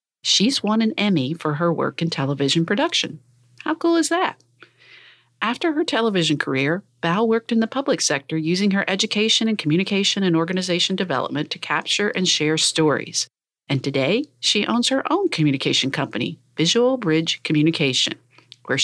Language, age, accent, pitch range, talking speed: English, 50-69, American, 145-205 Hz, 155 wpm